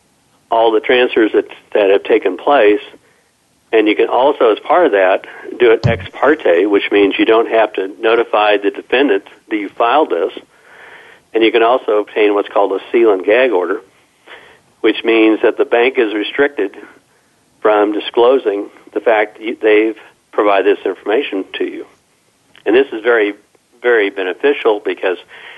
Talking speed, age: 165 wpm, 60-79